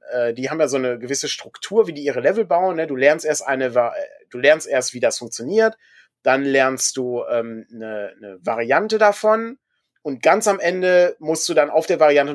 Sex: male